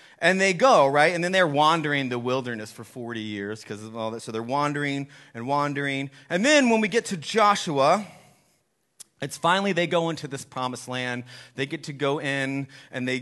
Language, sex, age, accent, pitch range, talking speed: English, male, 30-49, American, 120-165 Hz, 200 wpm